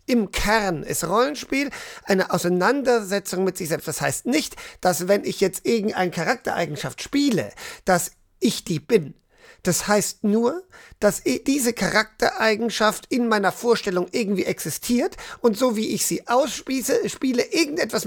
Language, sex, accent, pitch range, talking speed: German, male, German, 190-250 Hz, 135 wpm